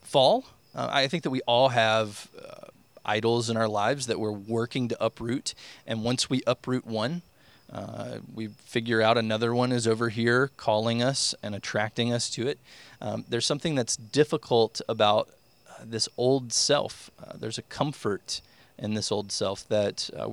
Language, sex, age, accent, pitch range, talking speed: English, male, 20-39, American, 110-140 Hz, 175 wpm